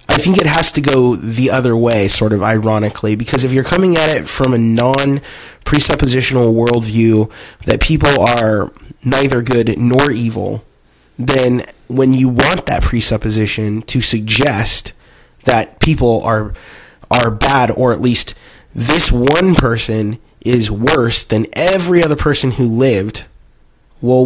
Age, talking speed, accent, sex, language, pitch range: 20-39, 145 wpm, American, male, English, 110-140 Hz